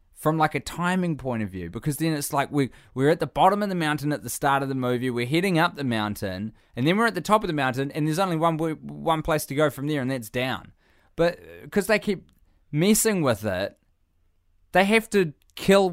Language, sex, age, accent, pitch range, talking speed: English, male, 20-39, Australian, 90-140 Hz, 240 wpm